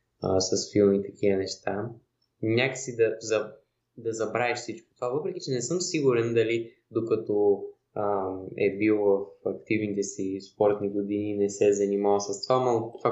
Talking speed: 155 wpm